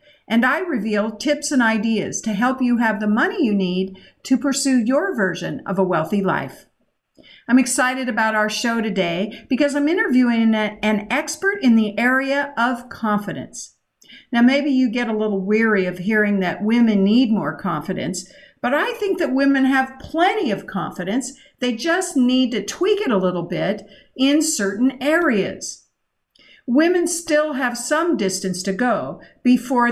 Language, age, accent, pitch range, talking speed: English, 50-69, American, 205-270 Hz, 160 wpm